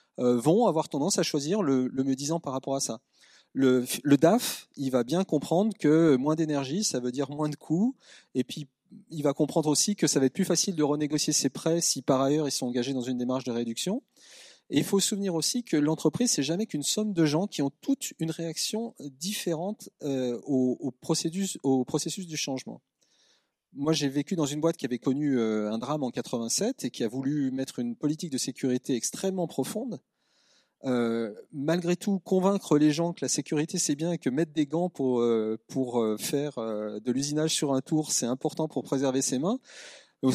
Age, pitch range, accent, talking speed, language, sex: 30-49, 135-185 Hz, French, 205 wpm, French, male